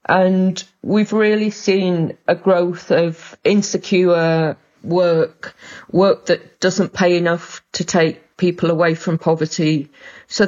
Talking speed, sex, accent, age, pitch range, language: 120 wpm, female, British, 40-59, 165-190 Hz, English